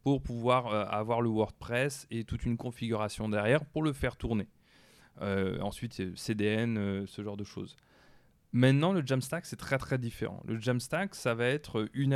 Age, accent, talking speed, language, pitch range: 20-39, French, 170 wpm, French, 110-135 Hz